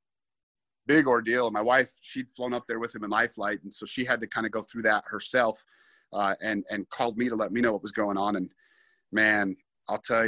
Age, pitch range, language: 30-49, 105-125 Hz, English